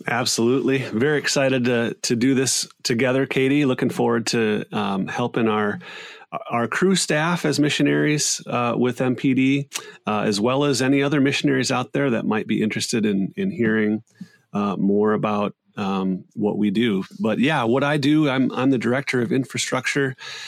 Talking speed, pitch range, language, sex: 165 wpm, 110-145 Hz, English, male